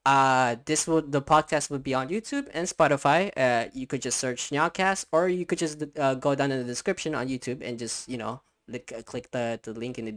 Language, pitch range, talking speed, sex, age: English, 130-175 Hz, 235 wpm, male, 10-29